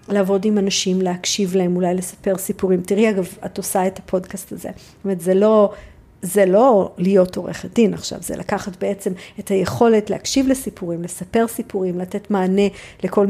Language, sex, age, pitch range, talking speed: Hebrew, female, 50-69, 180-210 Hz, 165 wpm